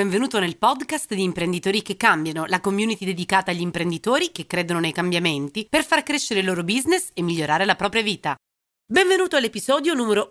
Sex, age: female, 30-49